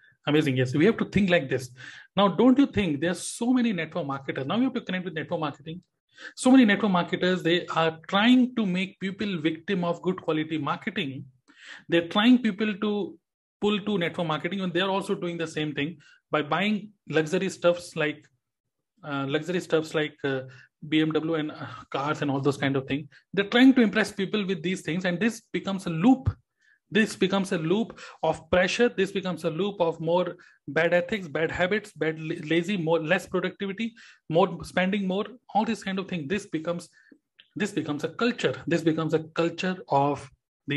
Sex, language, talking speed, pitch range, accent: male, Hindi, 195 wpm, 155-205 Hz, native